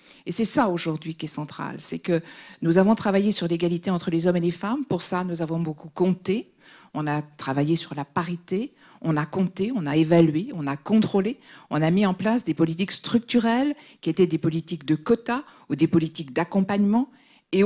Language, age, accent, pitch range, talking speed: French, 50-69, French, 155-195 Hz, 205 wpm